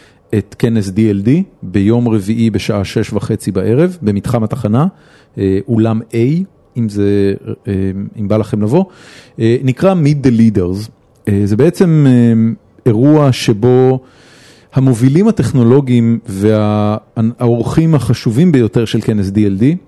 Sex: male